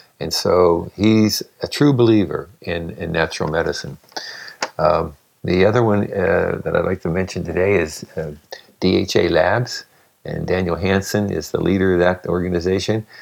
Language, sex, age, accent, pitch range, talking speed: English, male, 60-79, American, 85-110 Hz, 155 wpm